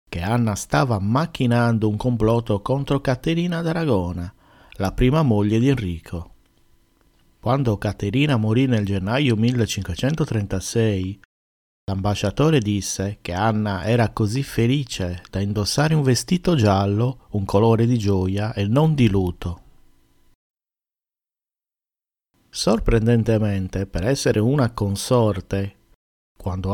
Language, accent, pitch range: Italian, native, 95-125 Hz